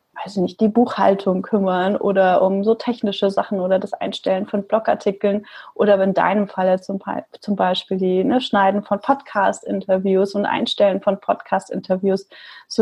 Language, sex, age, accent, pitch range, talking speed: German, female, 30-49, German, 190-220 Hz, 135 wpm